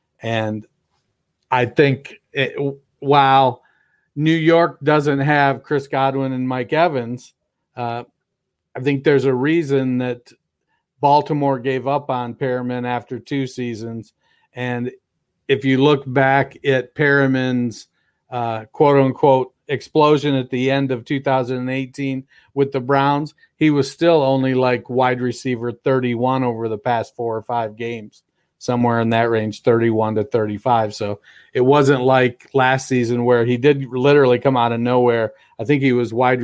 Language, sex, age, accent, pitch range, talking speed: English, male, 50-69, American, 120-140 Hz, 145 wpm